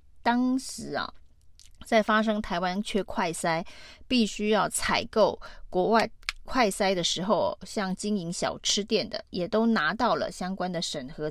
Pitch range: 185-220 Hz